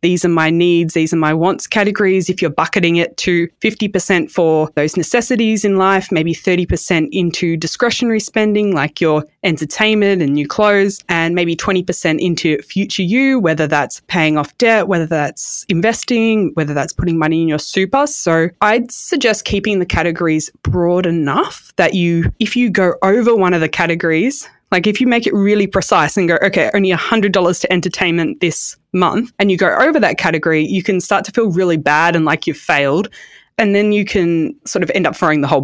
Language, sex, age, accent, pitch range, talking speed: English, female, 20-39, Australian, 165-205 Hz, 190 wpm